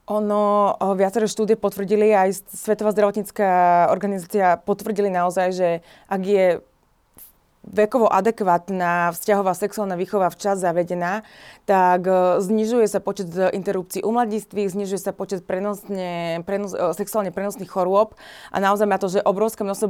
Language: Slovak